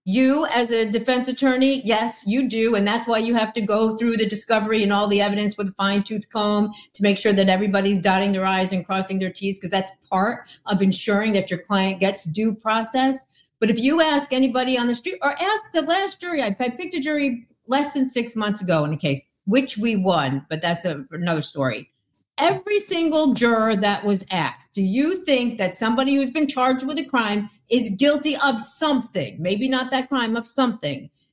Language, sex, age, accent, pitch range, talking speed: English, female, 50-69, American, 200-275 Hz, 215 wpm